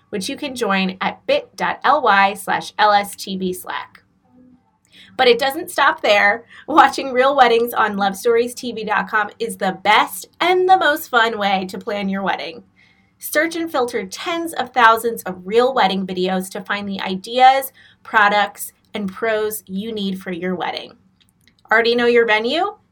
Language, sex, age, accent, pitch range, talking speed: English, female, 20-39, American, 200-260 Hz, 145 wpm